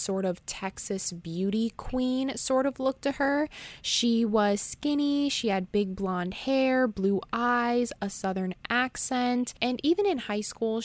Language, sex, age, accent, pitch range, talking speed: English, female, 20-39, American, 185-235 Hz, 155 wpm